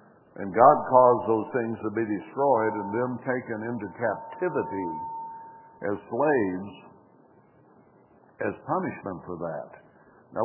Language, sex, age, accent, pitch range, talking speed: English, male, 60-79, American, 100-125 Hz, 115 wpm